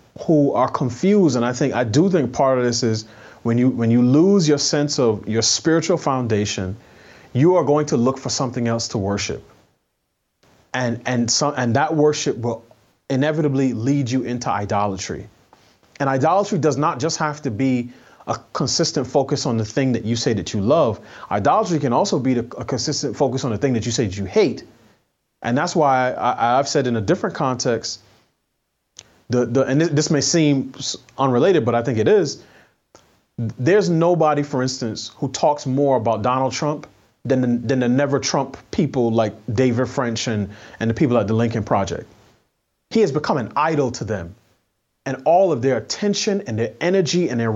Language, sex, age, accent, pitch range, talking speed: English, male, 30-49, American, 115-155 Hz, 185 wpm